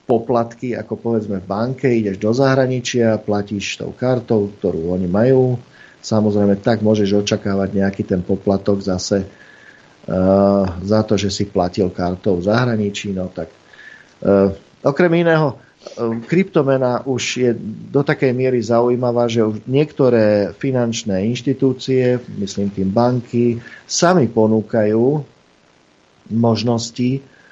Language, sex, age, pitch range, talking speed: Slovak, male, 50-69, 100-125 Hz, 120 wpm